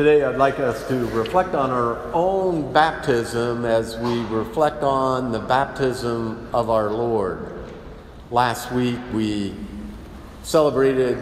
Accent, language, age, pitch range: American, English, 50-69, 115-140 Hz